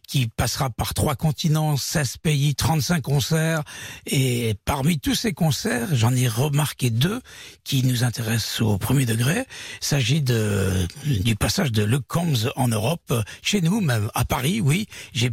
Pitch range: 110-150 Hz